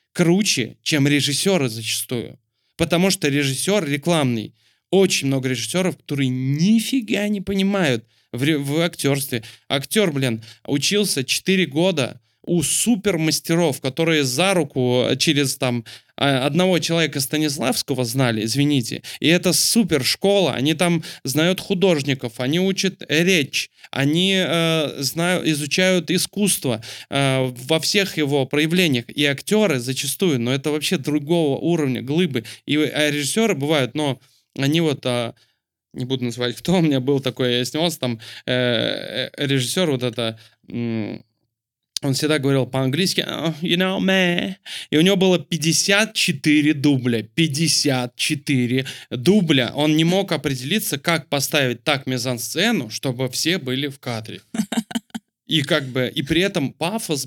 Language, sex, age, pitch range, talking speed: Russian, male, 20-39, 130-175 Hz, 130 wpm